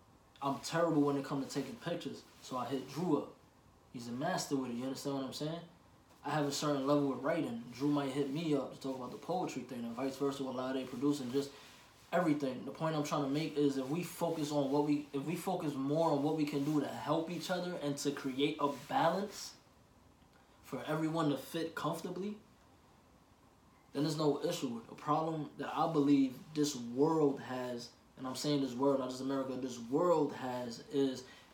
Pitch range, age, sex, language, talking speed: 135-150 Hz, 20-39, male, English, 215 wpm